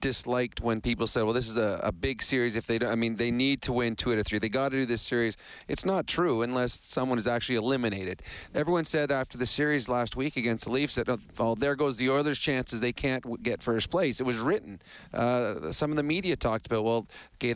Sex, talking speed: male, 255 wpm